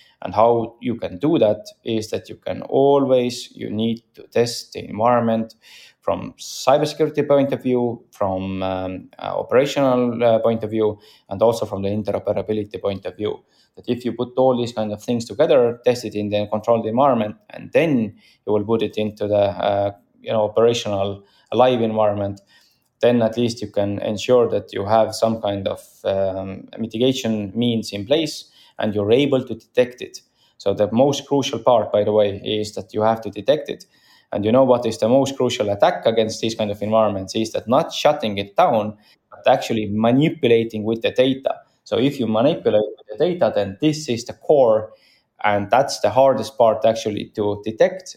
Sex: male